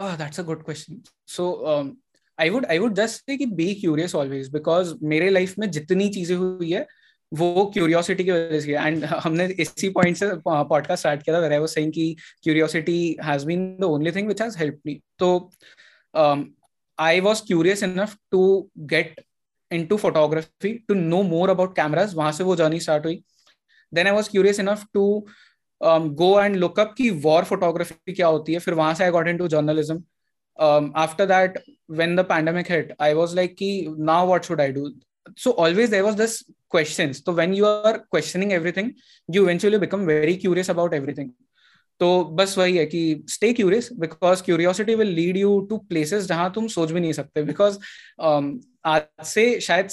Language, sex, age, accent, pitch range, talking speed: Hindi, male, 20-39, native, 160-200 Hz, 145 wpm